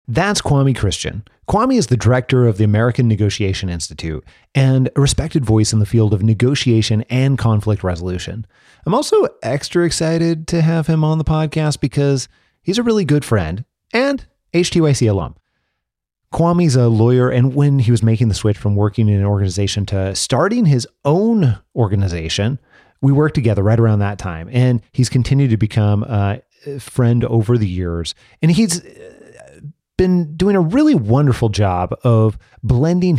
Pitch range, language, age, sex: 100-140 Hz, English, 30-49, male